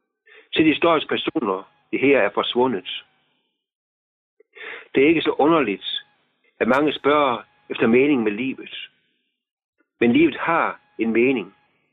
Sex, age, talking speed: male, 60-79, 125 wpm